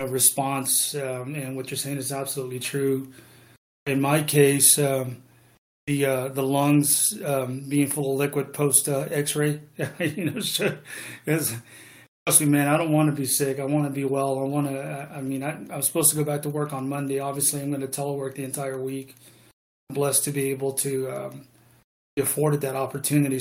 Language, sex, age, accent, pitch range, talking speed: English, male, 30-49, American, 130-145 Hz, 190 wpm